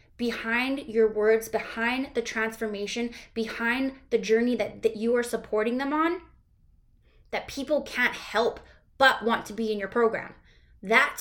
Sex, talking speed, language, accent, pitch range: female, 150 wpm, English, American, 200-240 Hz